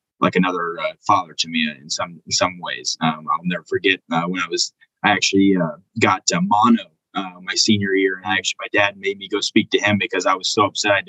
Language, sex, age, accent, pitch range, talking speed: English, male, 20-39, American, 95-145 Hz, 240 wpm